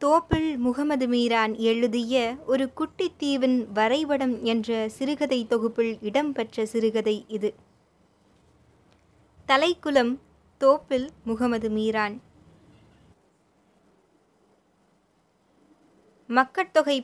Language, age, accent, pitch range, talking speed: Tamil, 20-39, native, 230-280 Hz, 65 wpm